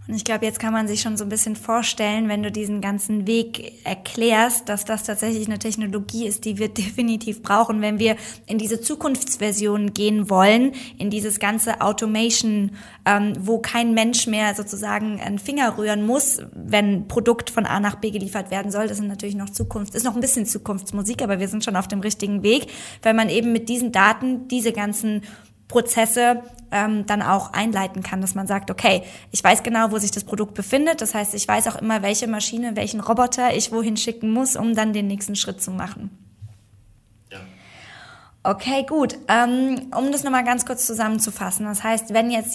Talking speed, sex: 190 wpm, female